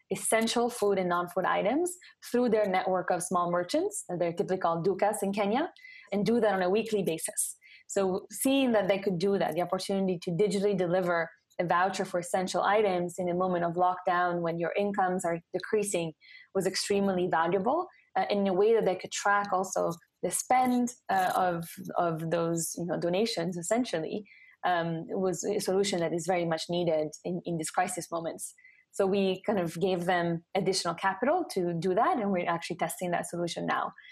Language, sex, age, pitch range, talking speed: English, female, 20-39, 175-205 Hz, 185 wpm